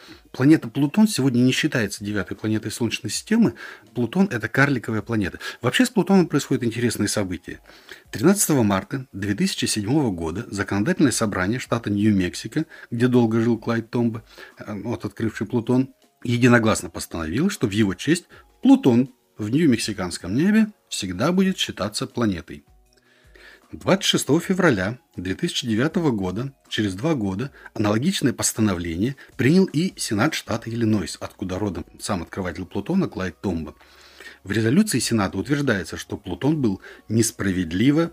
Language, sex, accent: Russian, male, native